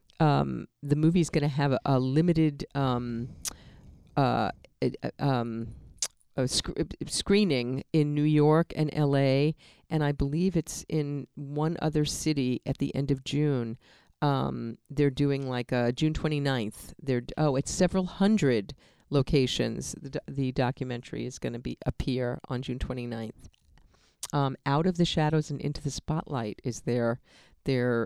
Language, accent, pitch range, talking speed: English, American, 130-160 Hz, 155 wpm